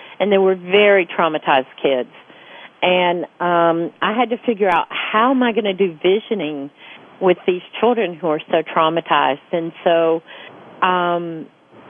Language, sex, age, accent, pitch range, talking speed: English, female, 50-69, American, 165-200 Hz, 150 wpm